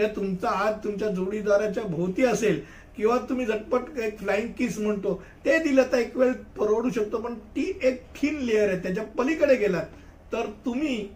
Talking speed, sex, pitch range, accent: 65 wpm, male, 190-240 Hz, native